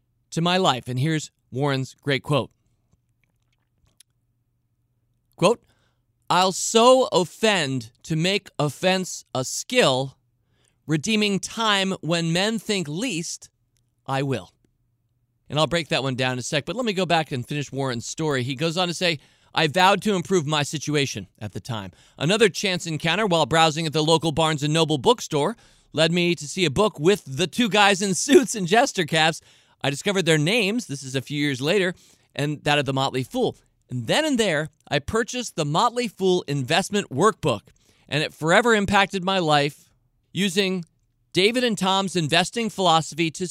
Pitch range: 135-185 Hz